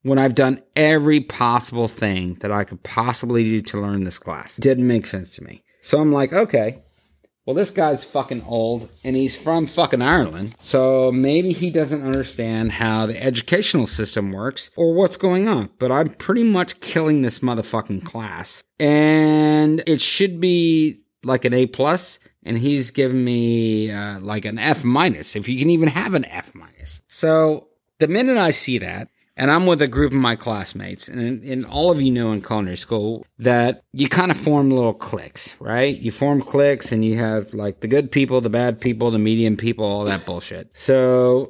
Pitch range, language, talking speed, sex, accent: 115-150 Hz, English, 190 wpm, male, American